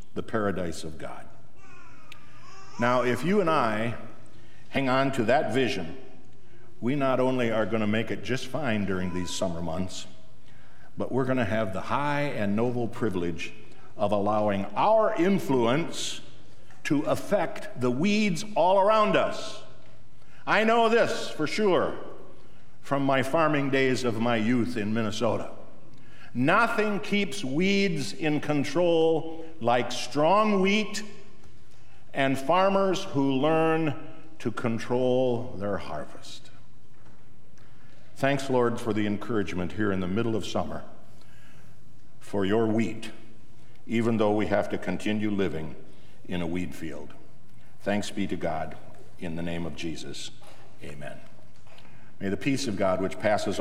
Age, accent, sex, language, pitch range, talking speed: 60-79, American, male, English, 105-145 Hz, 135 wpm